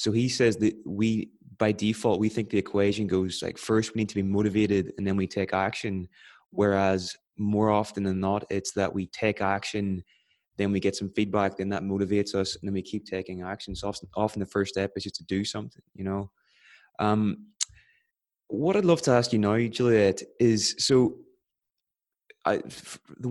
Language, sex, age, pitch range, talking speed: English, male, 20-39, 100-115 Hz, 190 wpm